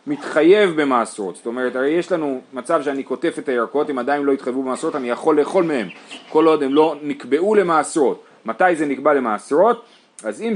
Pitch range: 125-165 Hz